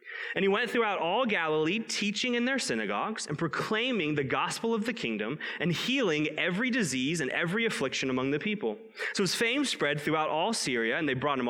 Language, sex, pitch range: English, male, 135-200 Hz